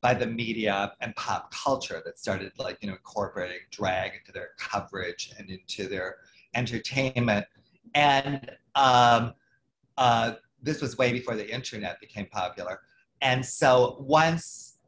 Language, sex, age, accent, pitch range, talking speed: English, male, 40-59, American, 105-130 Hz, 135 wpm